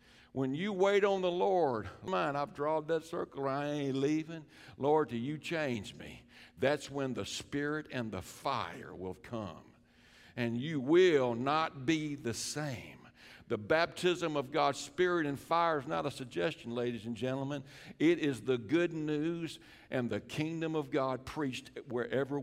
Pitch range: 130-160 Hz